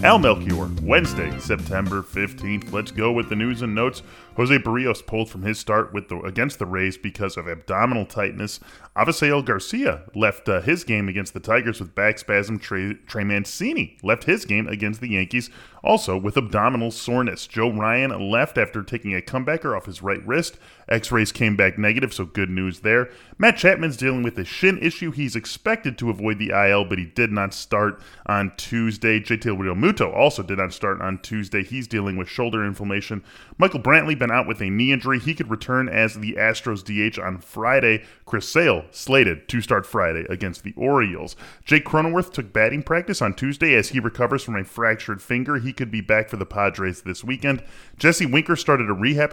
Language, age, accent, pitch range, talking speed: English, 10-29, American, 100-130 Hz, 195 wpm